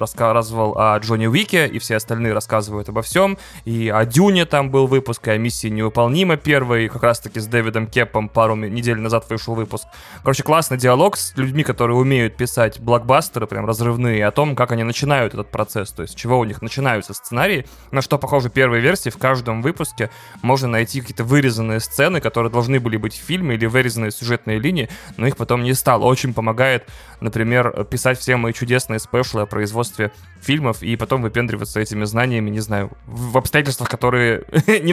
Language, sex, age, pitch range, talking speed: Russian, male, 20-39, 115-155 Hz, 180 wpm